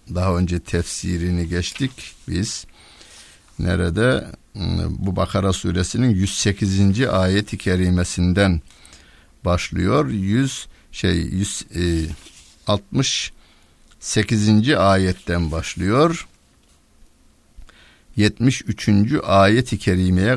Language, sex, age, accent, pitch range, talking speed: Turkish, male, 60-79, native, 80-100 Hz, 60 wpm